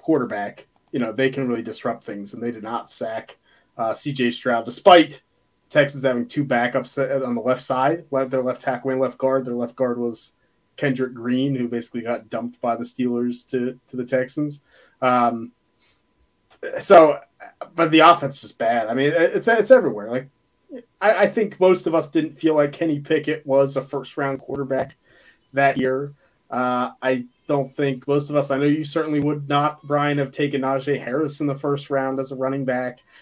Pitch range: 125-150 Hz